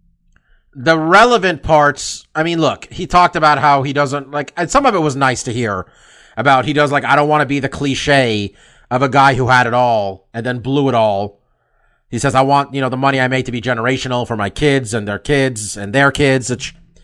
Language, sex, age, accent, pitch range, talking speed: English, male, 30-49, American, 115-140 Hz, 235 wpm